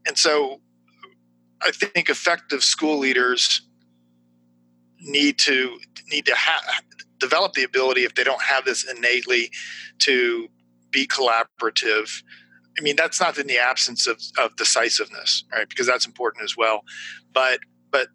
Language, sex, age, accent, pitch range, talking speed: English, male, 40-59, American, 90-145 Hz, 140 wpm